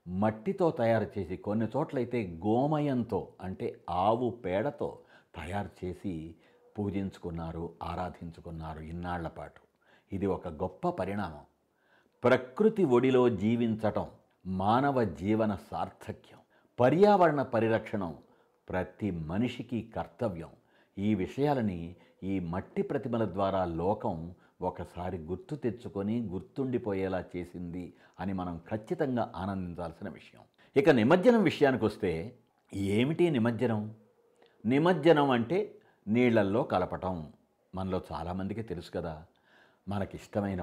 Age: 60-79